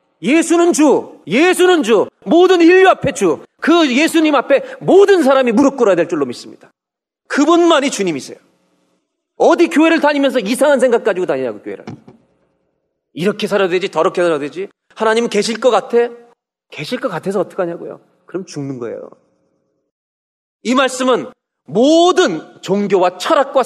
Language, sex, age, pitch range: Korean, male, 40-59, 190-295 Hz